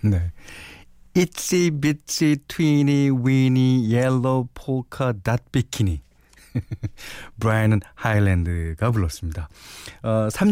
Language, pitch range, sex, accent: Korean, 90-140 Hz, male, native